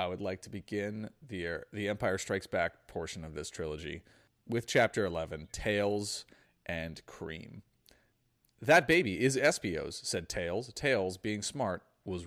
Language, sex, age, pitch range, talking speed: English, male, 30-49, 95-120 Hz, 145 wpm